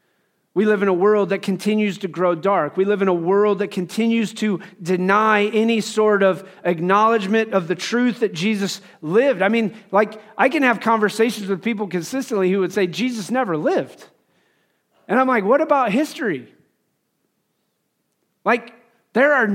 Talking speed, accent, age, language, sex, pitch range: 165 wpm, American, 40-59, English, male, 180-230 Hz